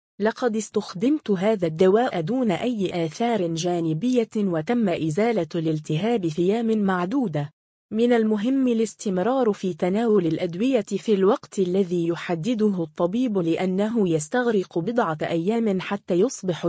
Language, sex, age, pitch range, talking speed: Arabic, female, 20-39, 170-230 Hz, 110 wpm